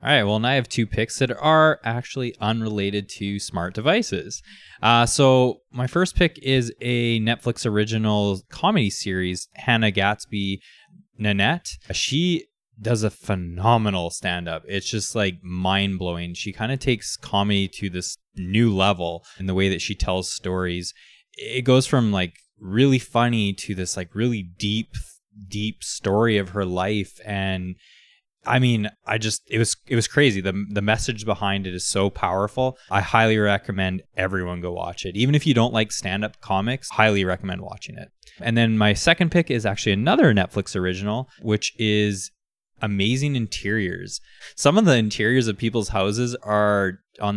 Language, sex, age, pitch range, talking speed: English, male, 20-39, 95-120 Hz, 165 wpm